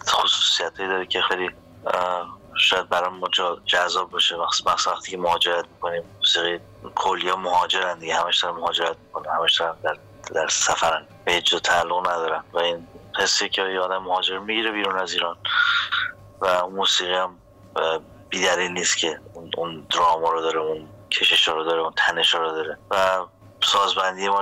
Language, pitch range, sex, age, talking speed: Persian, 85-95 Hz, male, 30-49, 140 wpm